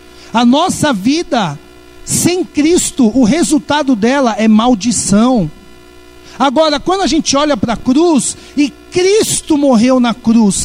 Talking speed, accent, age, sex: 130 wpm, Brazilian, 60-79, male